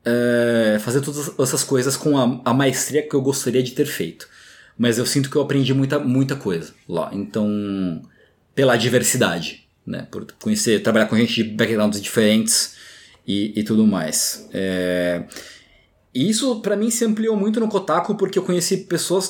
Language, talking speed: Portuguese, 170 wpm